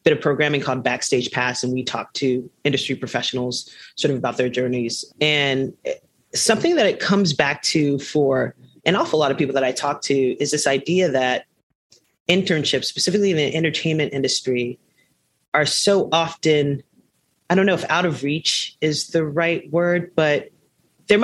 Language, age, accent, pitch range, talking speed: English, 30-49, American, 135-175 Hz, 170 wpm